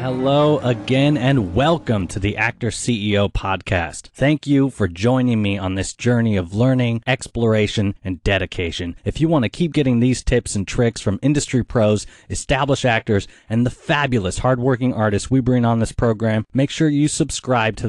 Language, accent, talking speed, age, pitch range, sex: English, American, 170 wpm, 30-49, 100-135 Hz, male